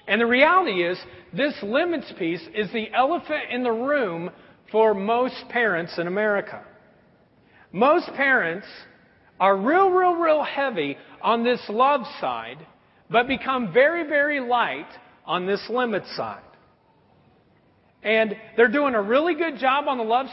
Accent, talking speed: American, 140 wpm